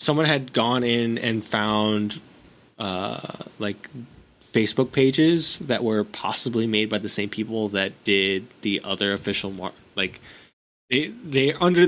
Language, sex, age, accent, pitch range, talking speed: English, male, 20-39, American, 105-135 Hz, 140 wpm